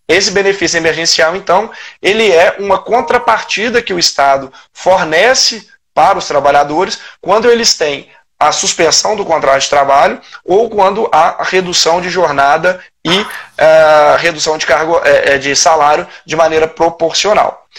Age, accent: 20-39, Brazilian